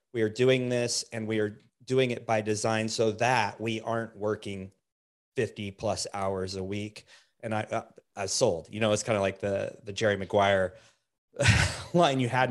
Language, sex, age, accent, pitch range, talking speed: English, male, 30-49, American, 105-120 Hz, 180 wpm